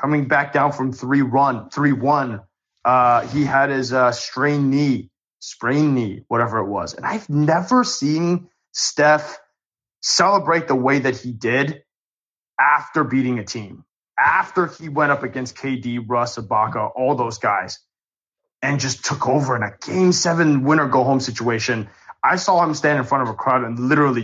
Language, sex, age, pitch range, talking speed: English, male, 30-49, 120-150 Hz, 170 wpm